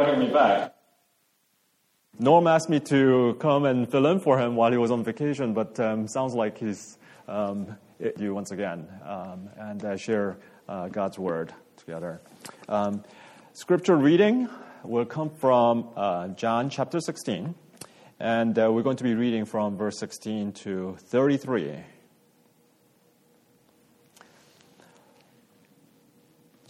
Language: English